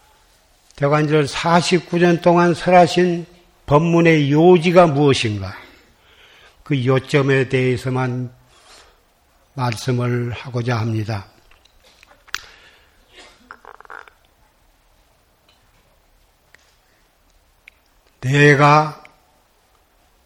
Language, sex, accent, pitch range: Korean, male, native, 125-150 Hz